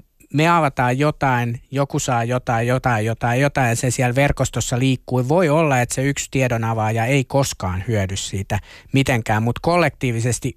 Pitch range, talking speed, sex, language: 110-135 Hz, 155 wpm, male, Finnish